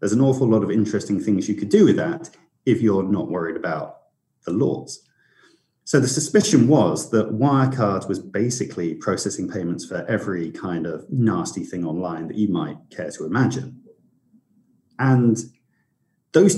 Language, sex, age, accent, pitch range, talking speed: English, male, 40-59, British, 105-135 Hz, 160 wpm